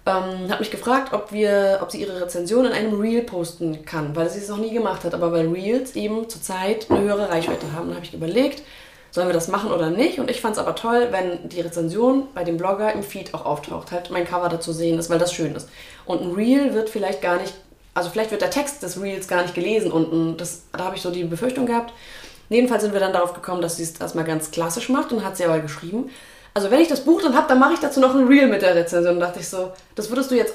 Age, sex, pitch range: 20-39, female, 175-250 Hz